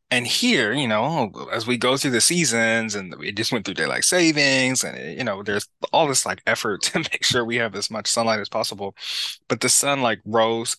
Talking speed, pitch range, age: 220 wpm, 110-130 Hz, 20-39